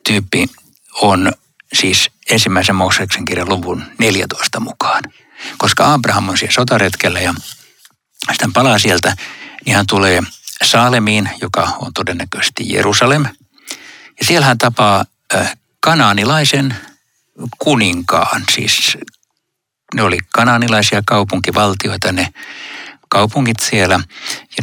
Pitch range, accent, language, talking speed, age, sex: 95-120 Hz, native, Finnish, 100 wpm, 60-79, male